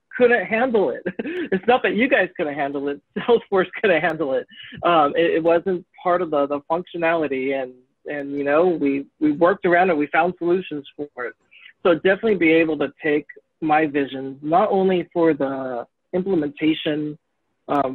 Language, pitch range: English, 140-180 Hz